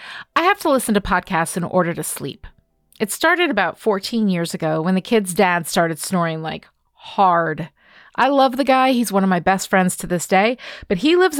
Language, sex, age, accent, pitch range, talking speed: English, female, 30-49, American, 180-250 Hz, 210 wpm